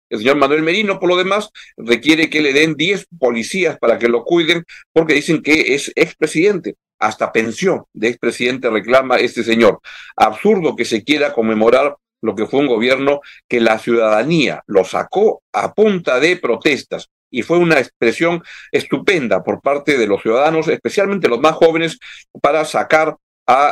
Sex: male